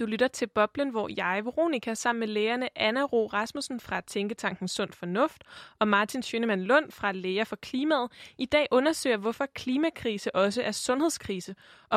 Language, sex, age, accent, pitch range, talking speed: Danish, female, 20-39, native, 210-270 Hz, 175 wpm